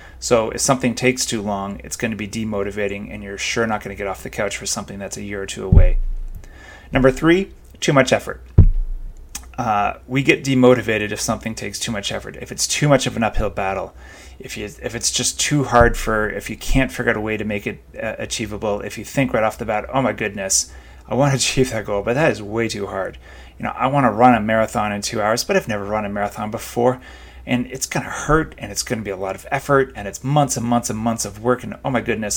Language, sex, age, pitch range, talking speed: English, male, 30-49, 100-125 Hz, 255 wpm